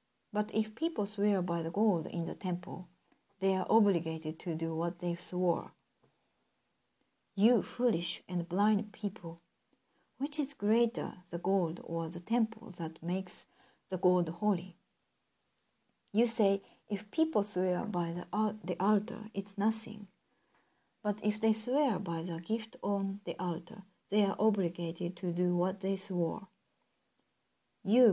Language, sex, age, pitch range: Japanese, female, 40-59, 180-220 Hz